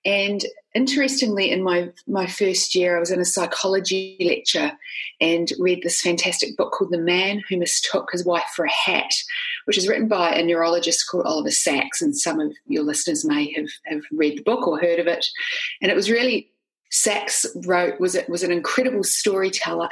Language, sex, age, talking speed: English, female, 30-49, 185 wpm